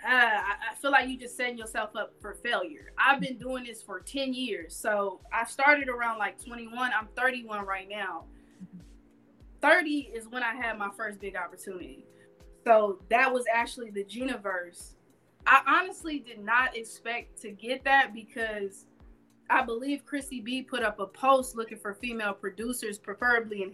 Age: 20-39